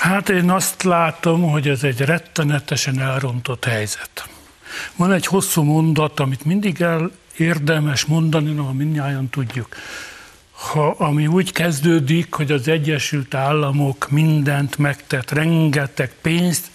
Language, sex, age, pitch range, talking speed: Hungarian, male, 60-79, 140-175 Hz, 120 wpm